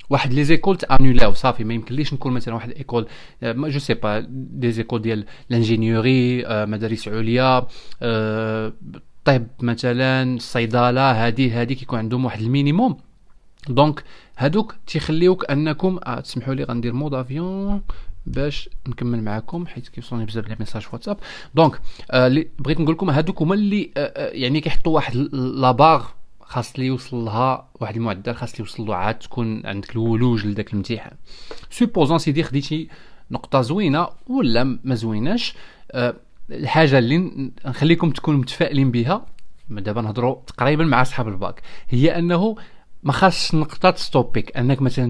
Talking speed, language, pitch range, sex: 135 wpm, Arabic, 115-150 Hz, male